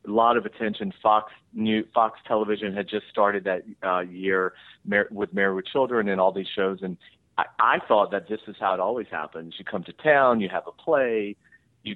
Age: 40-59